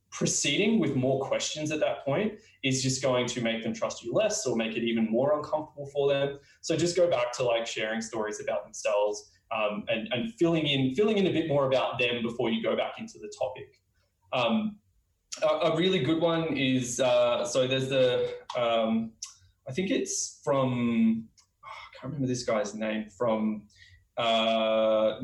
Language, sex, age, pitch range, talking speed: English, male, 20-39, 115-145 Hz, 185 wpm